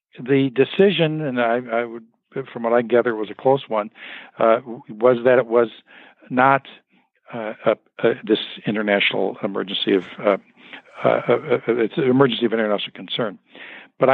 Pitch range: 110-130 Hz